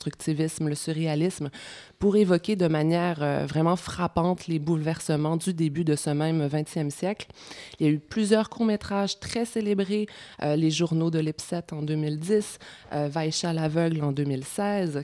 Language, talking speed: French, 165 wpm